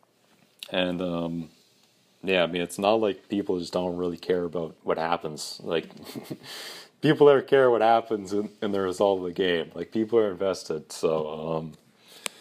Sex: male